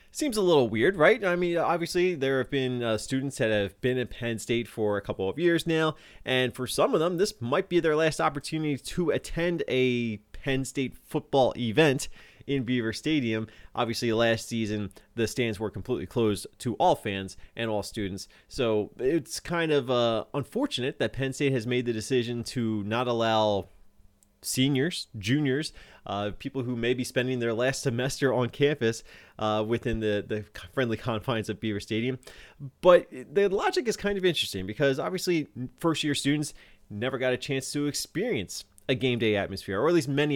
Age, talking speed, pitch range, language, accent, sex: 20-39, 185 wpm, 110-140 Hz, English, American, male